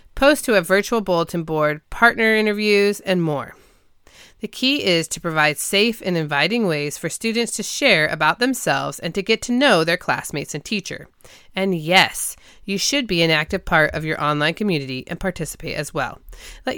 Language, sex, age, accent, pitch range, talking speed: English, female, 30-49, American, 155-235 Hz, 180 wpm